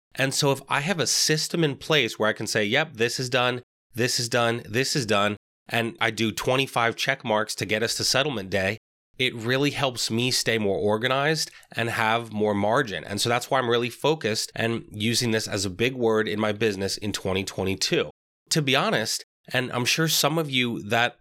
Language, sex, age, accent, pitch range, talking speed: English, male, 30-49, American, 110-135 Hz, 210 wpm